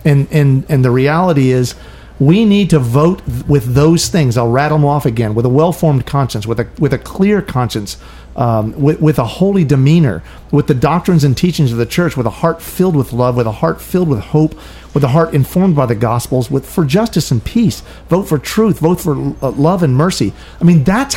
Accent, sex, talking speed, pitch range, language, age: American, male, 220 wpm, 135-180 Hz, English, 40-59